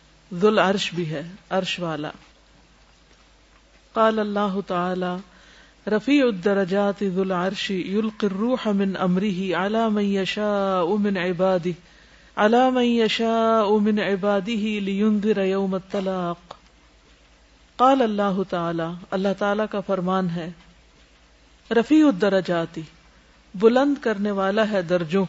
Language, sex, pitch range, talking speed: Urdu, female, 175-215 Hz, 105 wpm